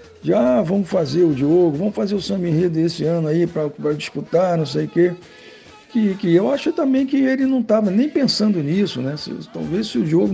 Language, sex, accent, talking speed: Portuguese, male, Brazilian, 210 wpm